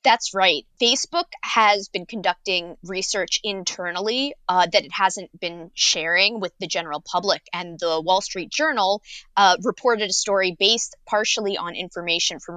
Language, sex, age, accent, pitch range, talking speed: English, female, 20-39, American, 170-210 Hz, 155 wpm